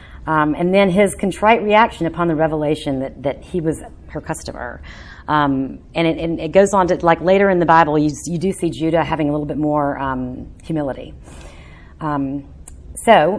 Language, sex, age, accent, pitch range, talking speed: English, female, 40-59, American, 135-170 Hz, 185 wpm